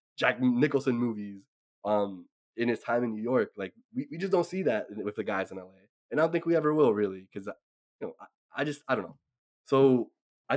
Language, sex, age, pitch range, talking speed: English, male, 20-39, 105-140 Hz, 235 wpm